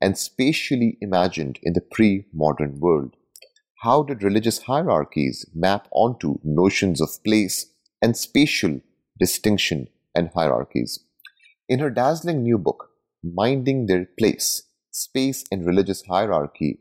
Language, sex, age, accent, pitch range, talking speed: English, male, 30-49, Indian, 85-110 Hz, 120 wpm